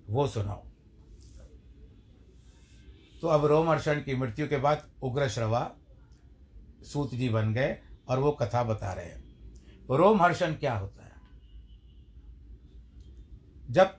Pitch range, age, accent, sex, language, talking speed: 100-155 Hz, 60-79, native, male, Hindi, 120 wpm